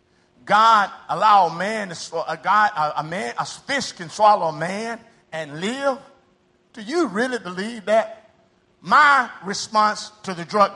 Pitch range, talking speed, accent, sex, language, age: 210-285 Hz, 155 wpm, American, male, Portuguese, 50-69